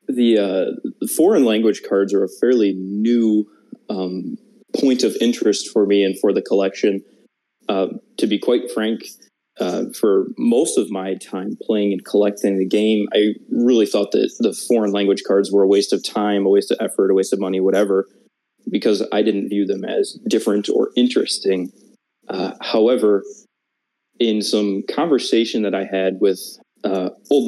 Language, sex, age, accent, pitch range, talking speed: English, male, 20-39, American, 95-105 Hz, 170 wpm